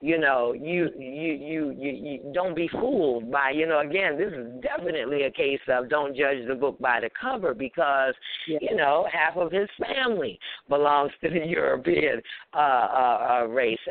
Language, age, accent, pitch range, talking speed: English, 60-79, American, 125-155 Hz, 175 wpm